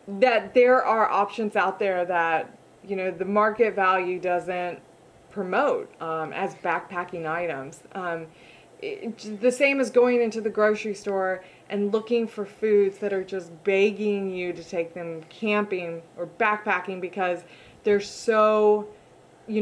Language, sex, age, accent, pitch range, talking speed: English, female, 20-39, American, 185-230 Hz, 140 wpm